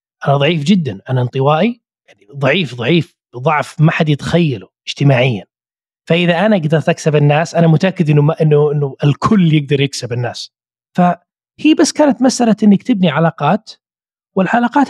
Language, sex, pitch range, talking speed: Arabic, male, 145-205 Hz, 145 wpm